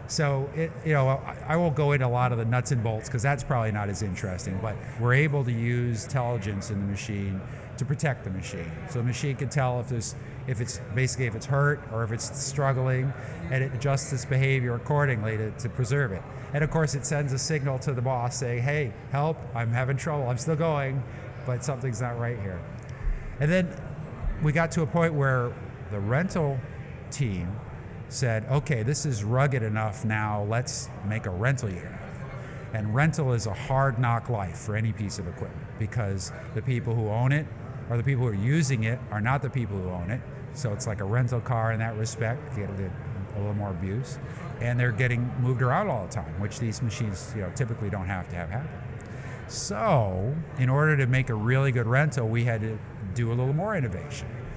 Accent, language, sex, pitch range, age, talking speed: American, English, male, 115-135 Hz, 50-69, 205 wpm